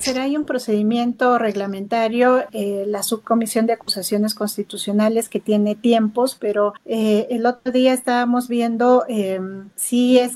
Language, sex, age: Spanish, female, 40-59